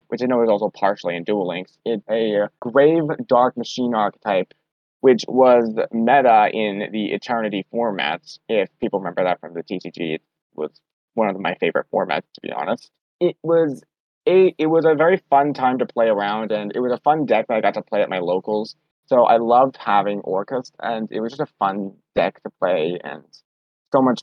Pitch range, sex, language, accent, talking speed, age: 105-140 Hz, male, English, American, 200 wpm, 20-39